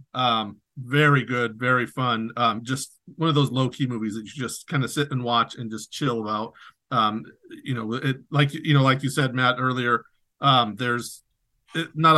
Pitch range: 120-150 Hz